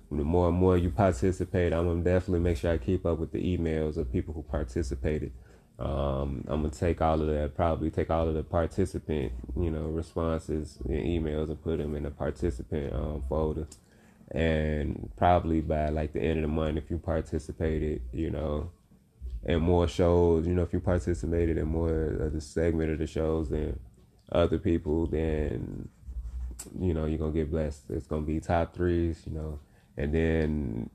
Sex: male